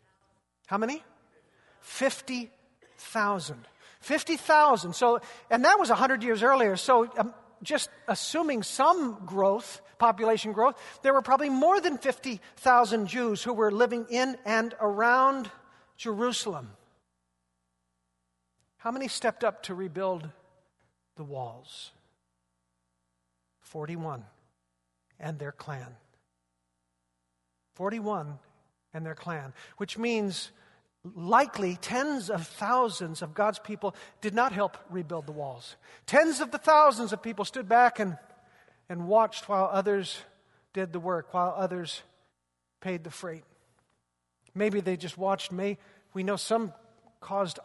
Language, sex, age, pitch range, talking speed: English, male, 50-69, 160-240 Hz, 120 wpm